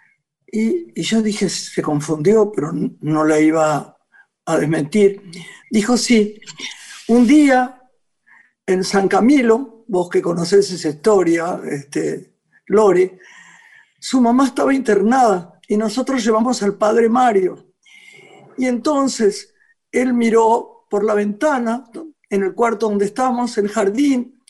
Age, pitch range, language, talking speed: 50-69, 190-265 Hz, Spanish, 120 wpm